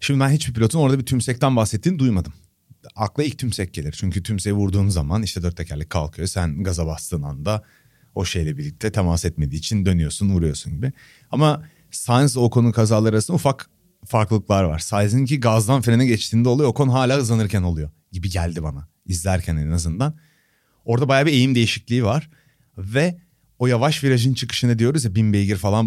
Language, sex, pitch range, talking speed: Turkish, male, 85-125 Hz, 170 wpm